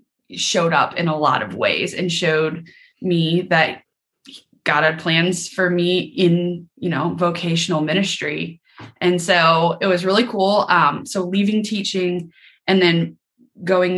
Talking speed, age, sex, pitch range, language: 145 wpm, 20-39, female, 165-205 Hz, English